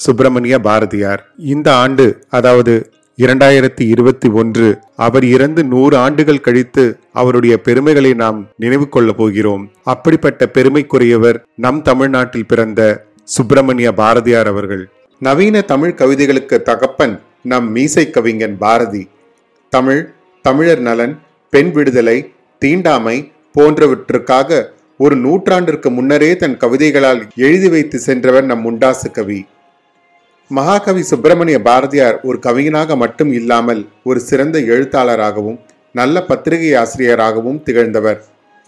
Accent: native